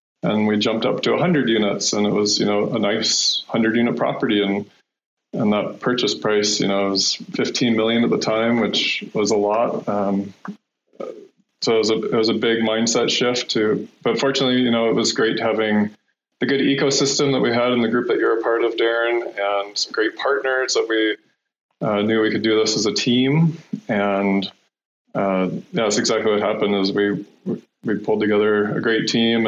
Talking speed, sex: 200 wpm, male